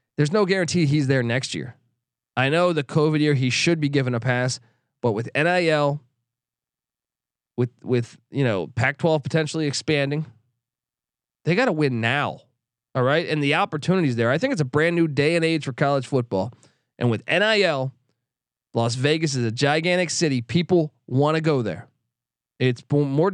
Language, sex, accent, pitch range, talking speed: English, male, American, 125-160 Hz, 175 wpm